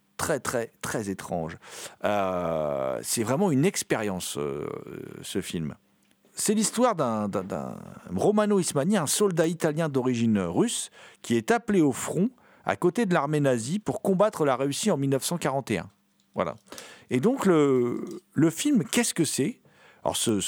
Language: French